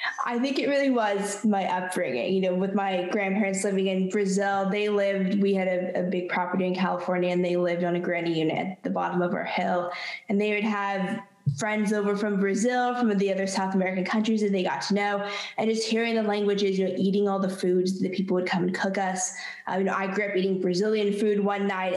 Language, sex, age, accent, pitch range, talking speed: English, female, 10-29, American, 180-210 Hz, 235 wpm